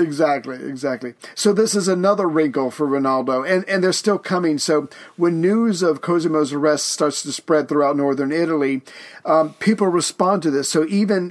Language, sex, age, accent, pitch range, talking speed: English, male, 50-69, American, 150-175 Hz, 175 wpm